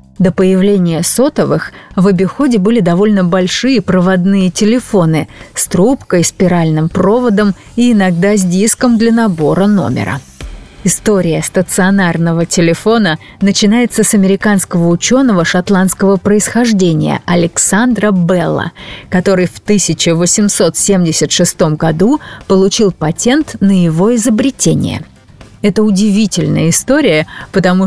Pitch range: 175-220 Hz